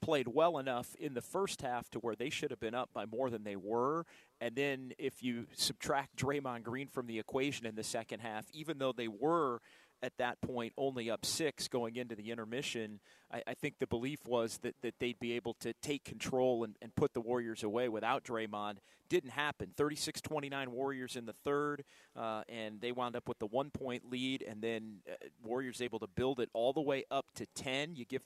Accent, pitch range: American, 115-145 Hz